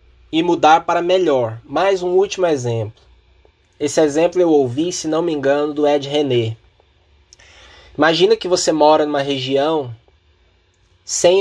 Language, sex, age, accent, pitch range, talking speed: Portuguese, male, 20-39, Brazilian, 110-170 Hz, 135 wpm